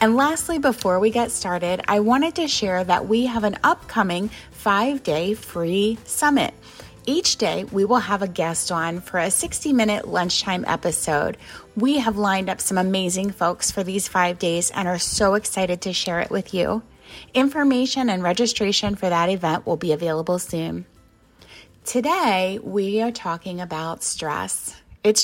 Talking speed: 160 wpm